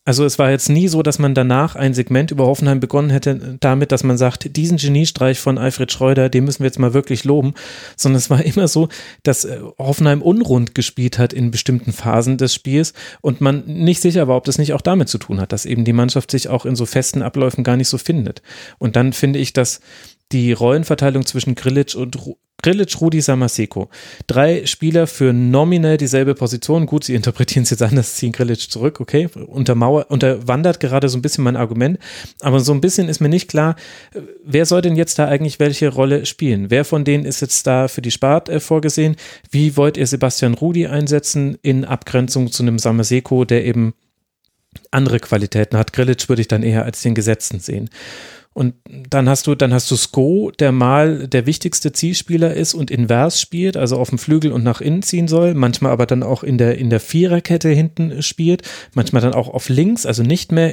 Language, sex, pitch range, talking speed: German, male, 125-155 Hz, 205 wpm